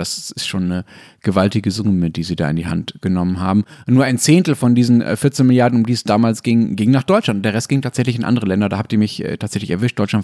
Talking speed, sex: 250 wpm, male